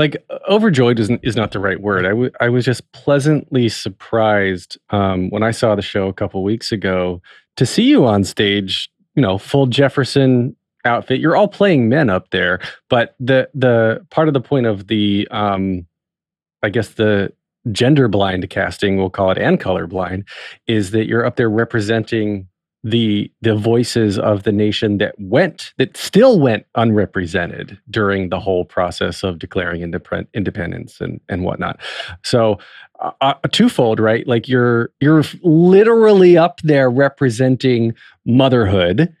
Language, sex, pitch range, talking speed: English, male, 105-145 Hz, 160 wpm